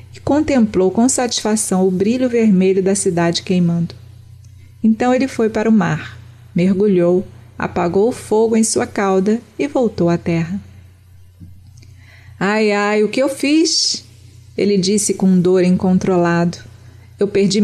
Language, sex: Portuguese, female